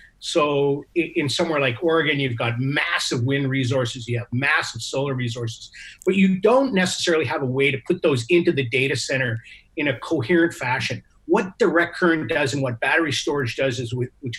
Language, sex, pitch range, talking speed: English, male, 125-165 Hz, 185 wpm